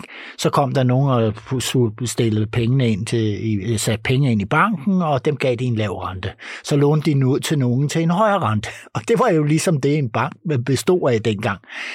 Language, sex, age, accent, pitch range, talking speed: Danish, male, 60-79, native, 110-135 Hz, 190 wpm